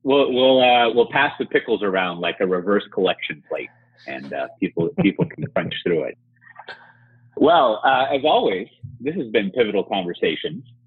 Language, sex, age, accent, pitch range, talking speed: English, male, 30-49, American, 95-125 Hz, 165 wpm